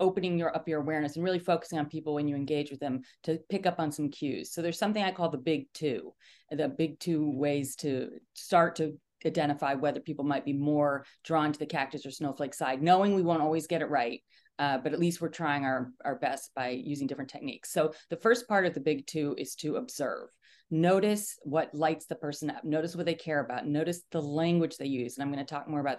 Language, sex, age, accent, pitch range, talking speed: English, female, 30-49, American, 145-165 Hz, 235 wpm